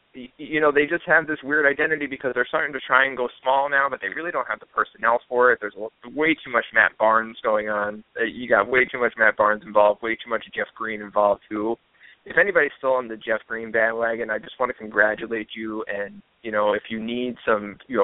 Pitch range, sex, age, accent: 105-135 Hz, male, 20-39, American